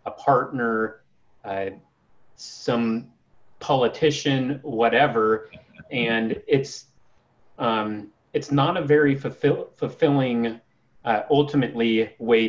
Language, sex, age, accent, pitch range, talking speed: English, male, 30-49, American, 120-155 Hz, 85 wpm